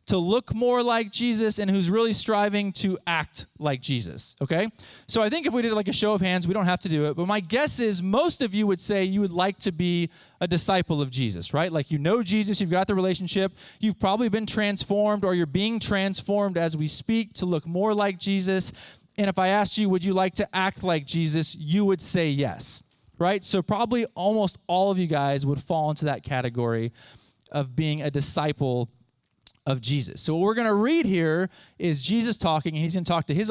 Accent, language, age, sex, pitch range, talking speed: American, English, 20-39, male, 150-205 Hz, 225 wpm